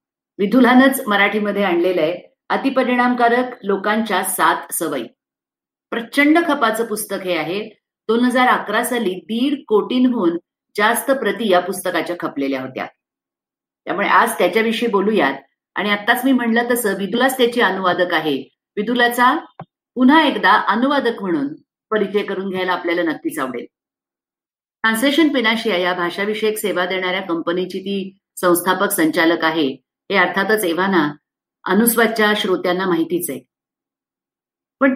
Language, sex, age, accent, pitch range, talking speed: Marathi, female, 50-69, native, 180-245 Hz, 115 wpm